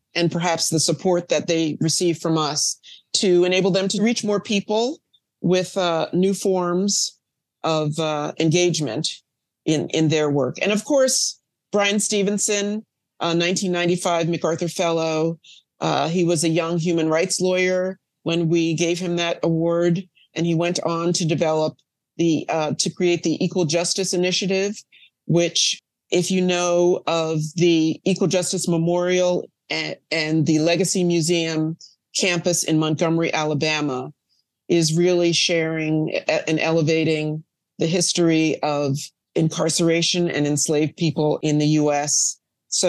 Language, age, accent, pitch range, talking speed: English, 40-59, American, 160-185 Hz, 135 wpm